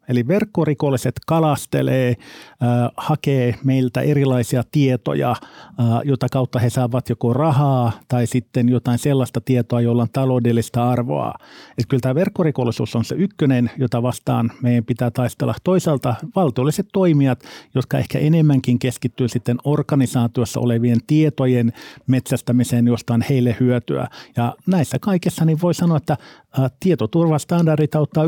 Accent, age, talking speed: native, 50-69, 125 wpm